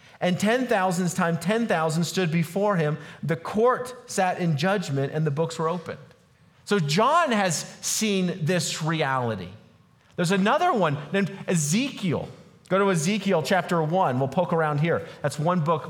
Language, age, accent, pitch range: English, 40-59, American, 155-205 Hz